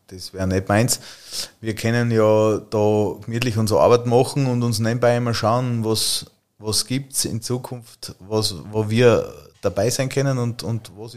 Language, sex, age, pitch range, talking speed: German, male, 30-49, 105-115 Hz, 160 wpm